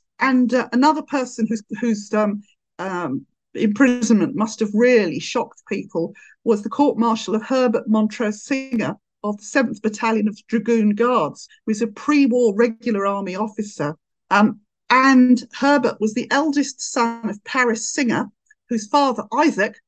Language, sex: English, female